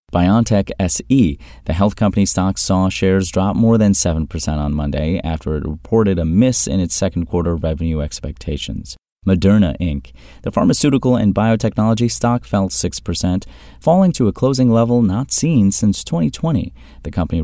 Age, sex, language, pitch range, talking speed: 30-49, male, English, 80-110 Hz, 155 wpm